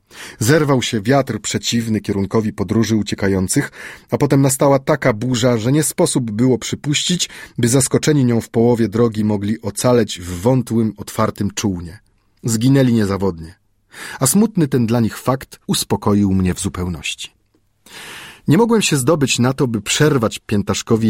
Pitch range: 100-140 Hz